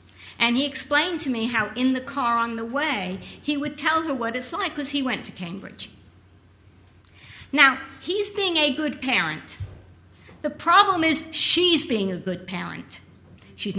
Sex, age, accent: female, 50-69, American